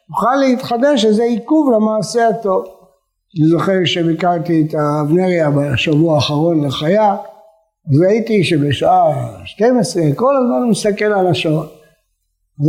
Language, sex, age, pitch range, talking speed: Hebrew, male, 60-79, 165-215 Hz, 115 wpm